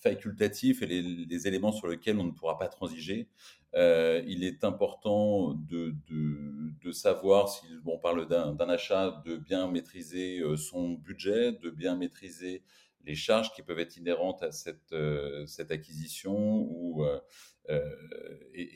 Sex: male